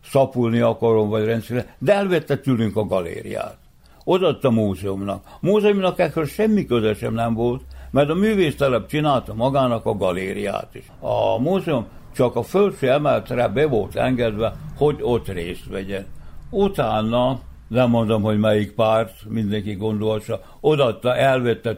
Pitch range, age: 105-130 Hz, 60-79